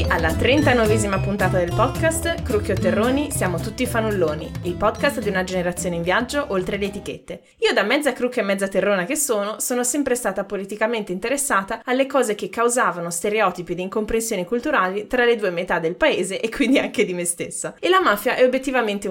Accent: native